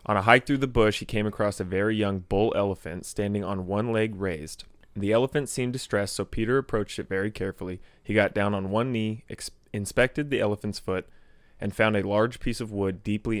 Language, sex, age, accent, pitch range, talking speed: English, male, 20-39, American, 100-115 Hz, 210 wpm